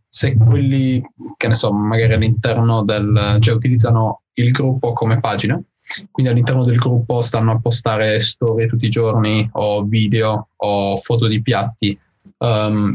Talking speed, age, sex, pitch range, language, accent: 150 wpm, 20-39, male, 110-125 Hz, Italian, native